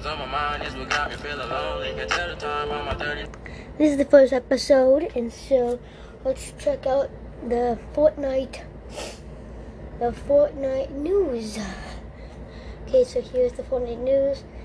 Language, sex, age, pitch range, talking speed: English, female, 20-39, 220-275 Hz, 85 wpm